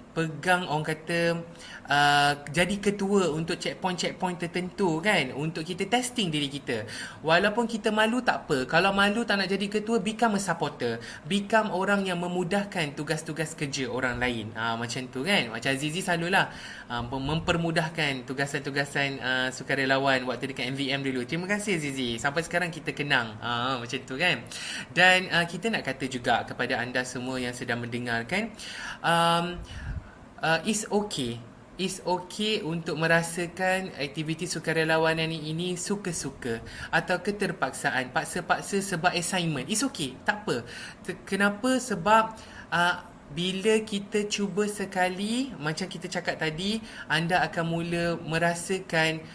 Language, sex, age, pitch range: Malay, male, 20-39, 140-190 Hz